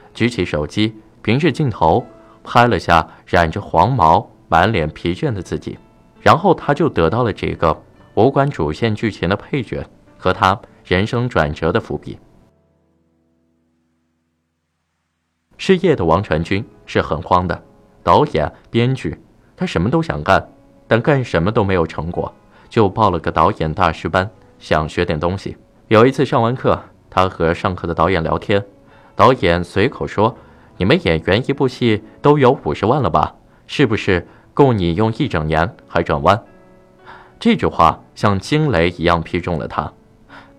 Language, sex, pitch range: Chinese, male, 80-120 Hz